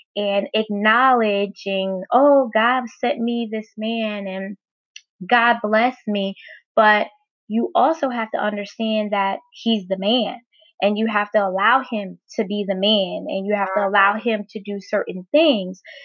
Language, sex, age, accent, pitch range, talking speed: English, female, 20-39, American, 200-245 Hz, 155 wpm